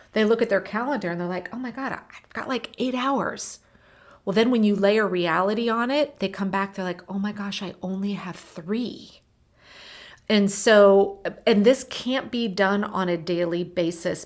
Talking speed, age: 200 wpm, 40-59